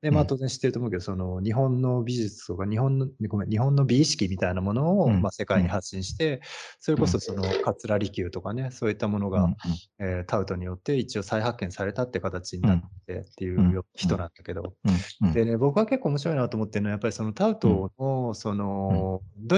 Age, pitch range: 20-39, 95-135 Hz